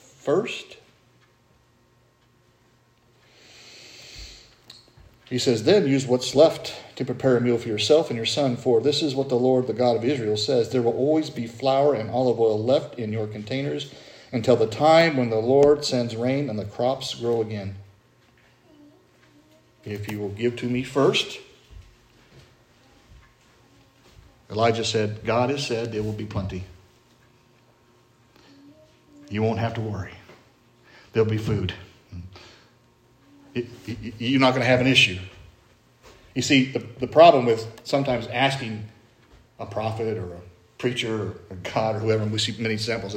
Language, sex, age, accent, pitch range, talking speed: English, male, 50-69, American, 110-135 Hz, 150 wpm